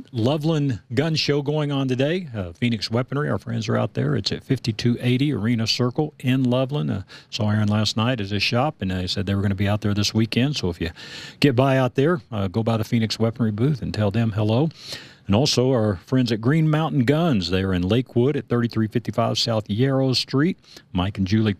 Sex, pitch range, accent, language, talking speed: male, 100-130 Hz, American, English, 220 wpm